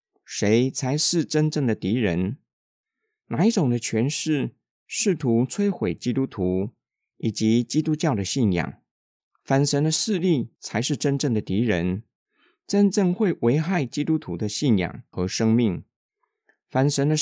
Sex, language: male, Chinese